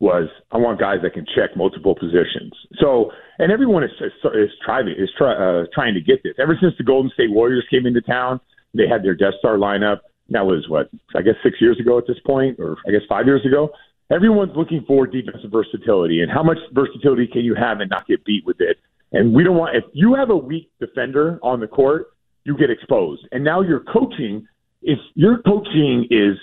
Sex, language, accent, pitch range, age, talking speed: male, English, American, 120-195 Hz, 40-59, 220 wpm